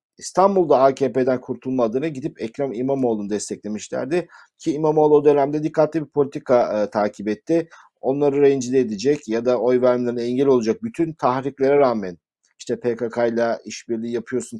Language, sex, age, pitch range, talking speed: Turkish, male, 50-69, 120-145 Hz, 135 wpm